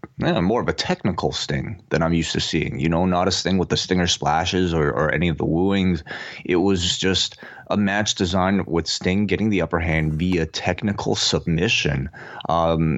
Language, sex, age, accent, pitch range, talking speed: English, male, 20-39, American, 80-90 Hz, 190 wpm